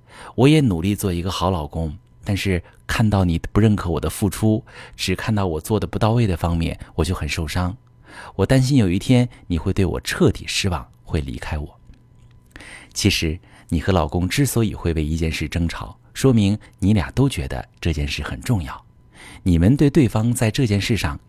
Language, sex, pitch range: Chinese, male, 90-120 Hz